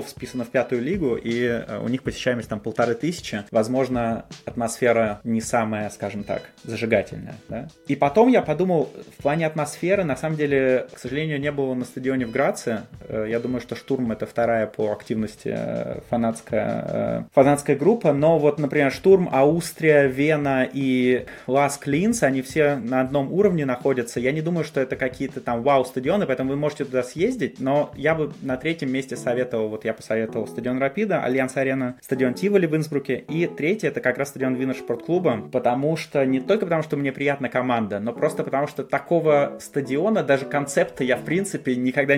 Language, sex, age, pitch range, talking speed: Russian, male, 20-39, 120-155 Hz, 170 wpm